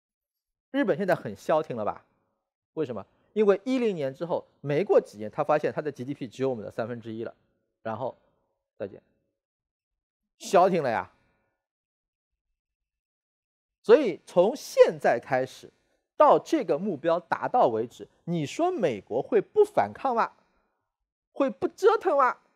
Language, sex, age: Chinese, male, 40-59